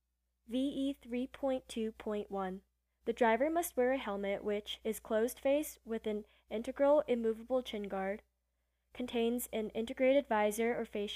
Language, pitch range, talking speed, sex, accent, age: English, 185-245 Hz, 130 wpm, female, American, 10-29